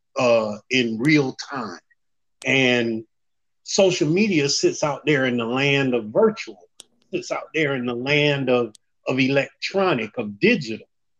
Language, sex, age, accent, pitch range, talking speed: English, male, 40-59, American, 120-165 Hz, 140 wpm